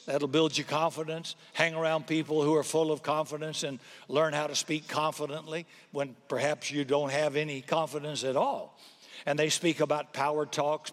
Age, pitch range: 60-79, 150-190 Hz